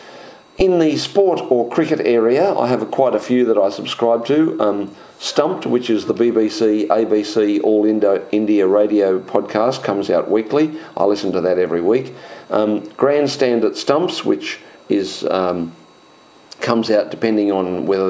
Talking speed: 165 wpm